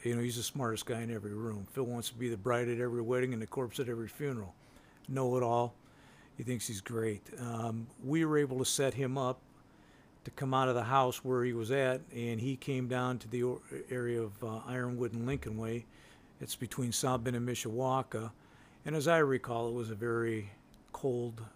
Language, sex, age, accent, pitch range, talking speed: English, male, 50-69, American, 115-130 Hz, 210 wpm